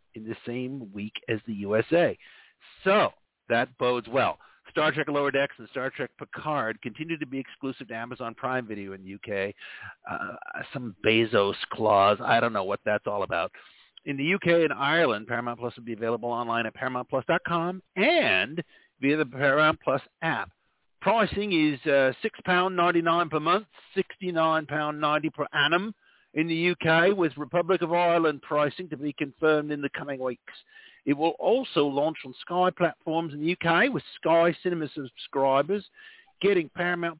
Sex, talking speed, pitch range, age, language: male, 160 wpm, 135-180 Hz, 50-69, English